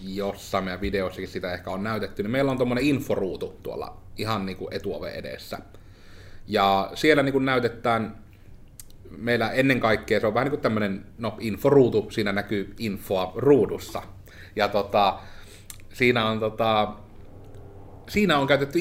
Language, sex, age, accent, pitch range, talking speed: Finnish, male, 30-49, native, 100-125 Hz, 140 wpm